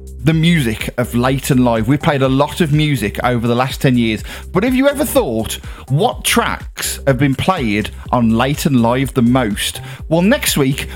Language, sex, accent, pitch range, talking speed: English, male, British, 115-155 Hz, 195 wpm